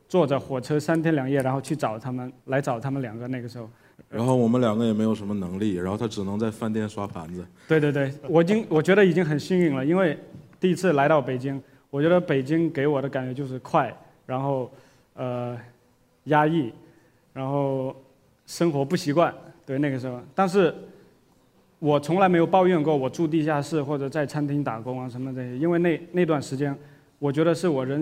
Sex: male